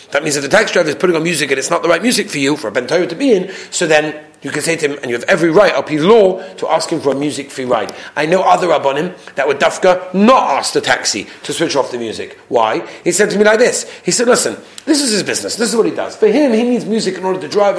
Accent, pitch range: British, 170-255 Hz